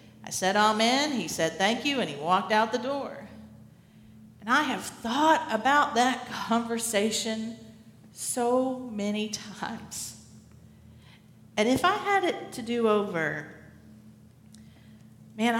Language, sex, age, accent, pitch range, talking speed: English, female, 50-69, American, 185-225 Hz, 125 wpm